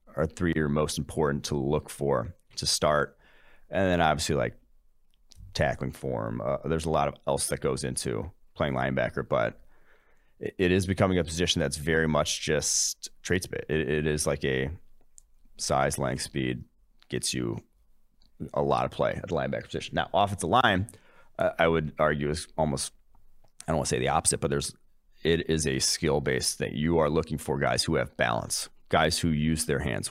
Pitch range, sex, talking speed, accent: 75-85 Hz, male, 190 wpm, American